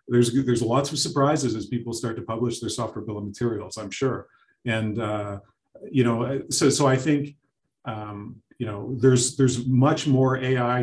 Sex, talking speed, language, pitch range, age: male, 185 wpm, English, 115-135 Hz, 40-59